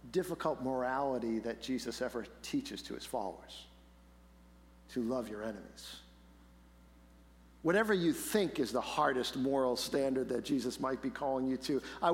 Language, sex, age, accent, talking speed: English, male, 50-69, American, 145 wpm